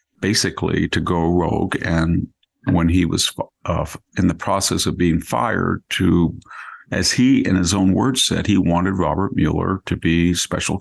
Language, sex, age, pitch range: English, male, 50-69, 85-100 Hz